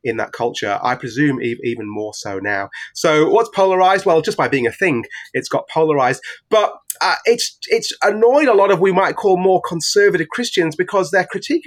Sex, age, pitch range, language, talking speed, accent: male, 30-49, 155-245 Hz, English, 200 wpm, British